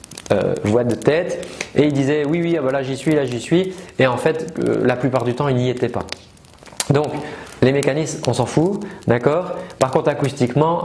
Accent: French